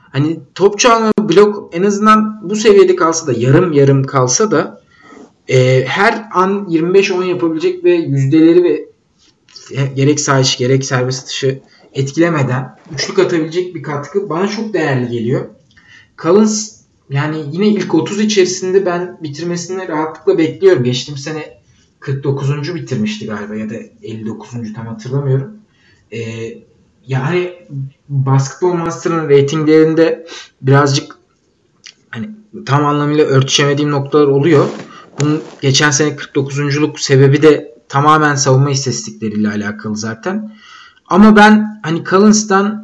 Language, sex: Turkish, male